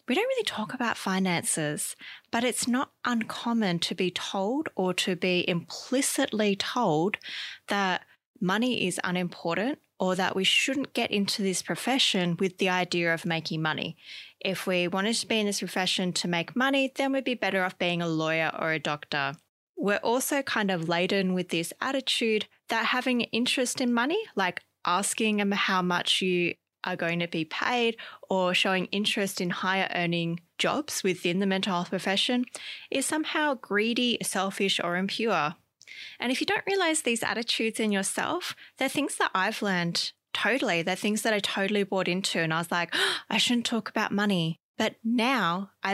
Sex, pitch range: female, 180-235 Hz